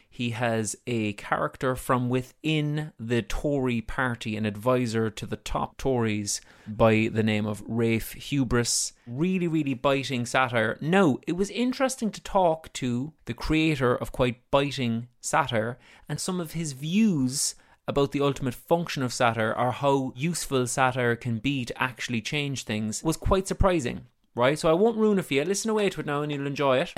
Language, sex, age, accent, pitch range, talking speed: English, male, 30-49, Irish, 120-150 Hz, 175 wpm